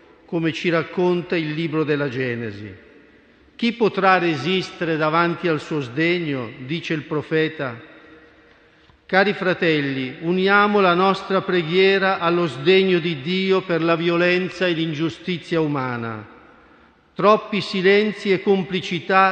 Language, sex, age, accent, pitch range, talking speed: Italian, male, 50-69, native, 160-185 Hz, 115 wpm